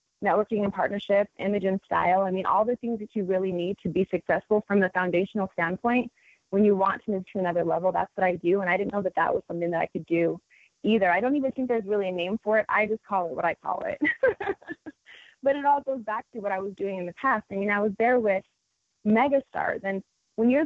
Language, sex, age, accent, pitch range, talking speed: English, female, 20-39, American, 185-220 Hz, 255 wpm